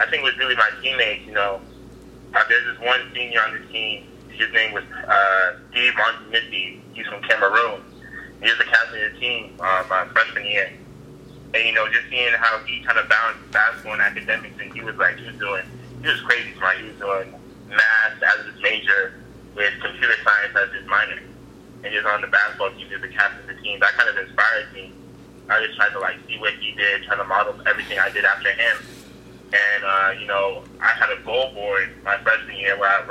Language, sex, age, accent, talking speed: English, male, 20-39, American, 200 wpm